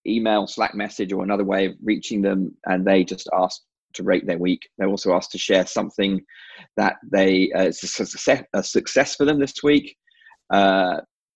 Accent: British